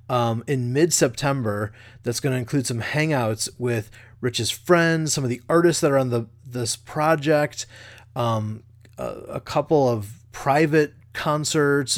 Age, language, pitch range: 30-49, English, 115-150 Hz